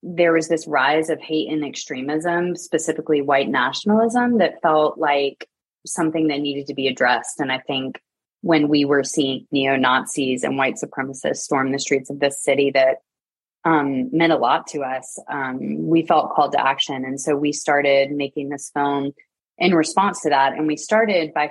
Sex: female